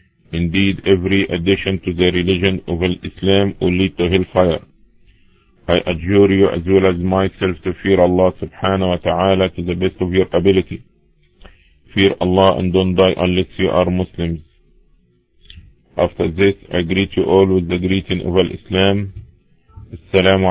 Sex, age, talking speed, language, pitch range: male, 50-69, 150 wpm, English, 85-95 Hz